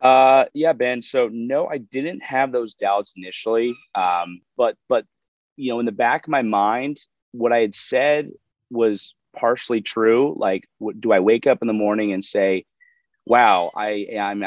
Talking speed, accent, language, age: 180 wpm, American, English, 30-49